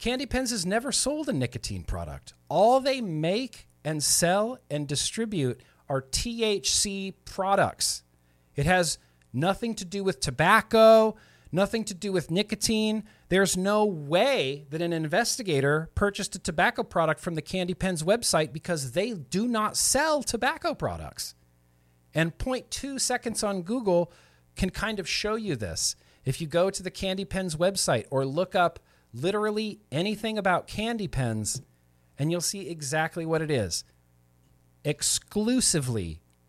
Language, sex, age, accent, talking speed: English, male, 40-59, American, 145 wpm